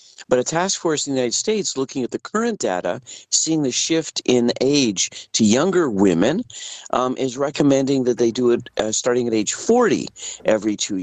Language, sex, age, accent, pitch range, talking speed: English, male, 50-69, American, 110-150 Hz, 190 wpm